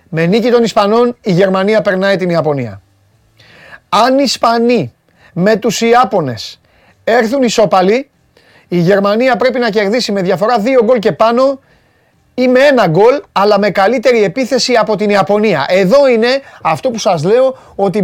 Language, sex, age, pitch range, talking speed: Greek, male, 30-49, 150-225 Hz, 155 wpm